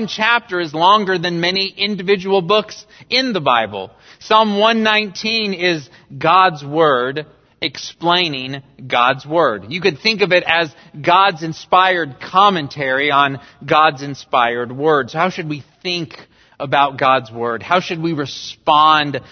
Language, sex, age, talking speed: English, male, 40-59, 130 wpm